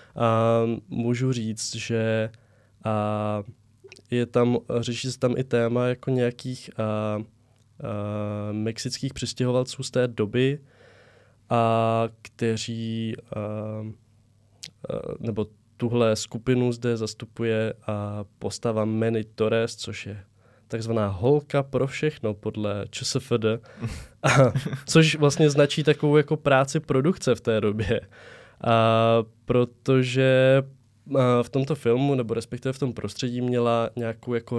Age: 20-39